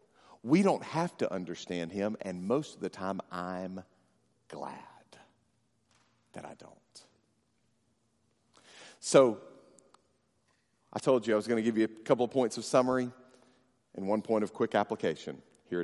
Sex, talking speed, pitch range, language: male, 150 wpm, 110-160 Hz, English